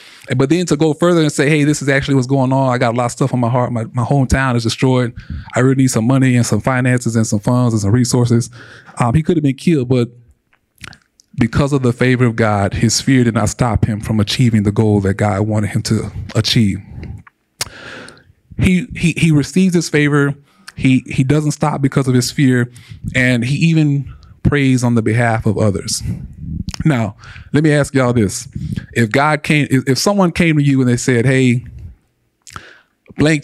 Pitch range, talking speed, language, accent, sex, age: 115-145 Hz, 205 wpm, English, American, male, 20-39